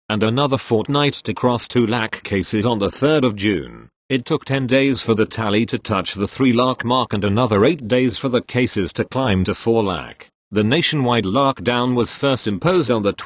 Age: 40-59